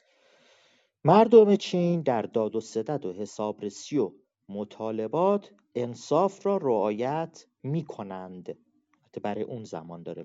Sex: male